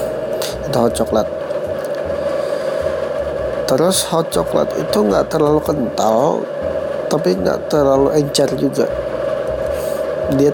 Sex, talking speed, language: male, 85 wpm, English